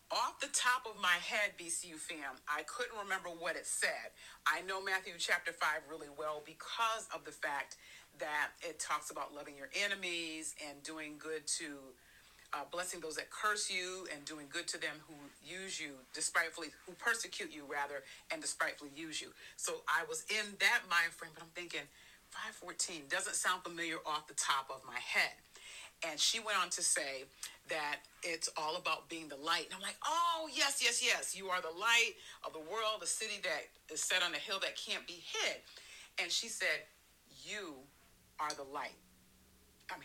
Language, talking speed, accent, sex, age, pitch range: English, 190 wpm, American, female, 40-59, 150-210 Hz